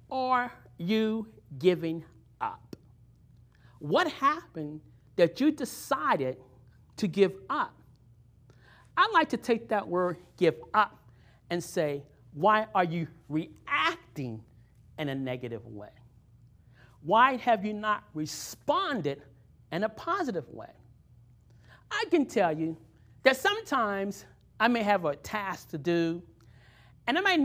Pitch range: 120-200 Hz